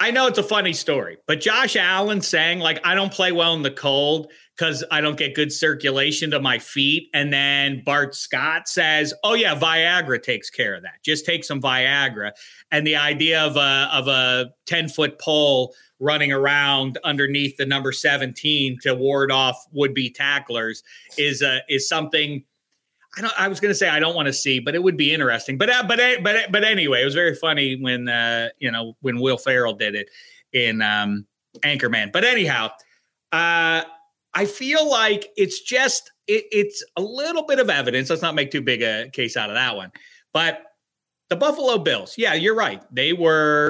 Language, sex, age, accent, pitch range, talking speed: English, male, 40-59, American, 130-170 Hz, 195 wpm